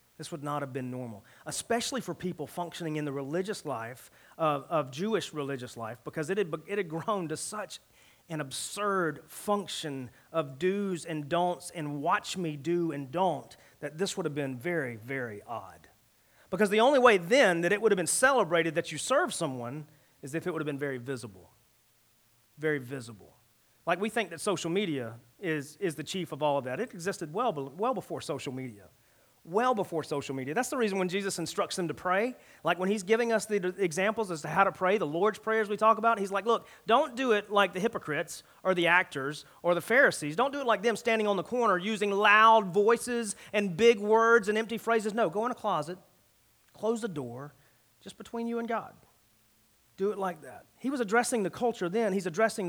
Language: English